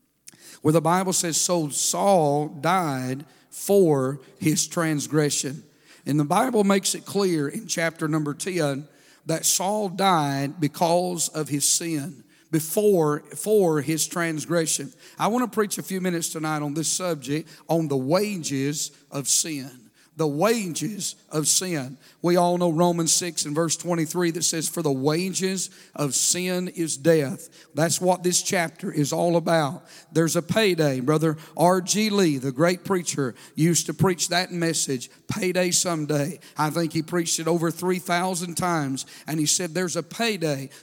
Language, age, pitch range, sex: English, 50-69, 155-185 Hz, male